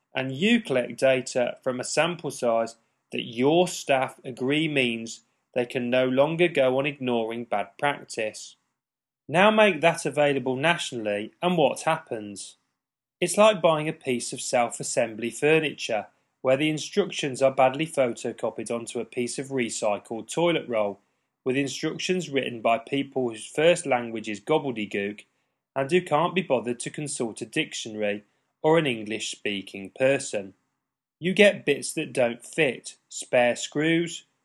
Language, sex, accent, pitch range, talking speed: English, male, British, 120-155 Hz, 145 wpm